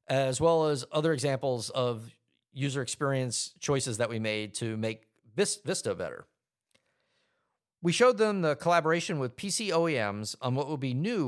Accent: American